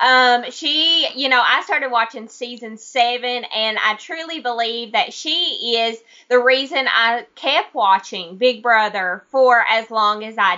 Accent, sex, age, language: American, female, 20-39, English